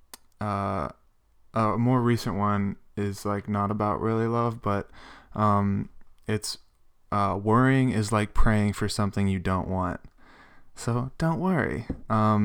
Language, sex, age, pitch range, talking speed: English, male, 20-39, 100-110 Hz, 135 wpm